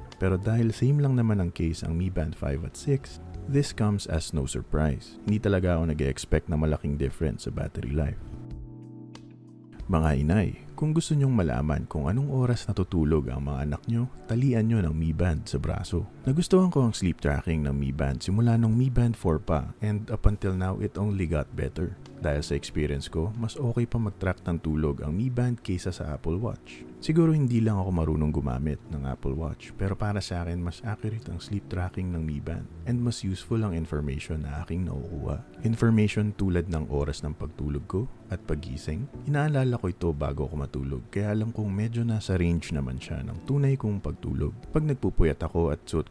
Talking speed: 195 wpm